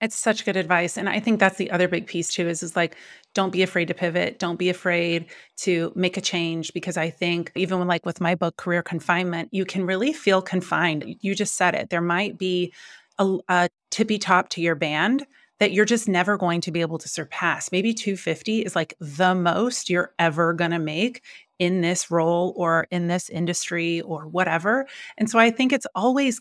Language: English